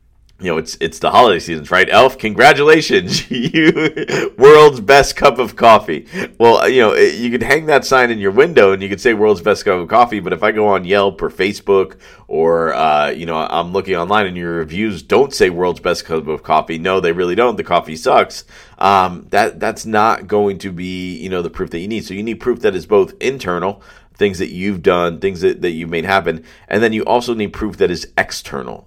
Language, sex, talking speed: English, male, 225 wpm